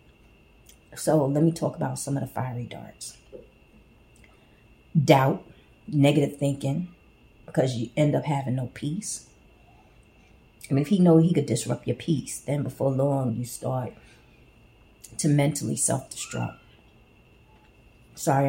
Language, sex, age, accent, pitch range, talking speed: English, female, 30-49, American, 130-155 Hz, 135 wpm